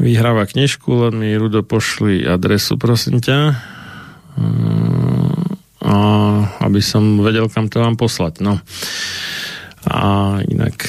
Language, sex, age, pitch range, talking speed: Slovak, male, 40-59, 105-120 Hz, 105 wpm